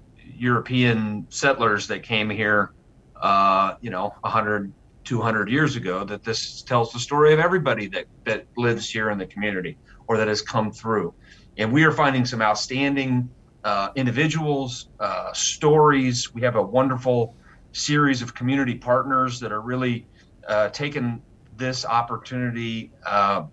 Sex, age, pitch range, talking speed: male, 40-59, 110-130 Hz, 145 wpm